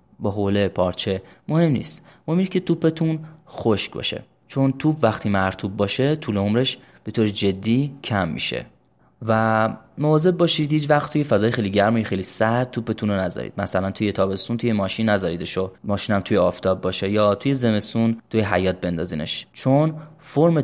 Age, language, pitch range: 20-39, English, 100-140 Hz